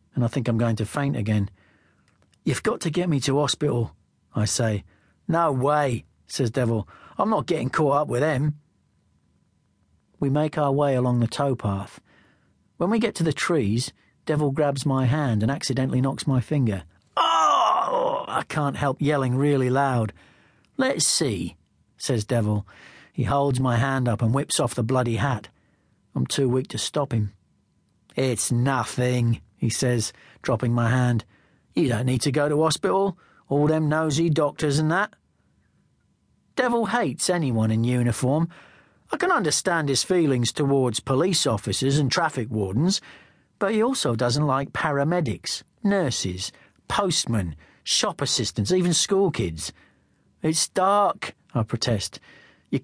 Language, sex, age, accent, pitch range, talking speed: English, male, 40-59, British, 115-155 Hz, 150 wpm